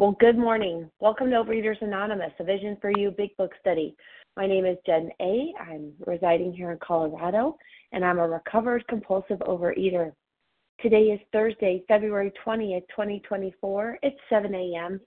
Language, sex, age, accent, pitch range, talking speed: English, female, 30-49, American, 170-215 Hz, 155 wpm